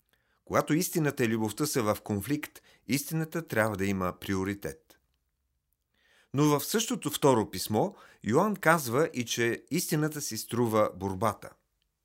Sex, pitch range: male, 105-150 Hz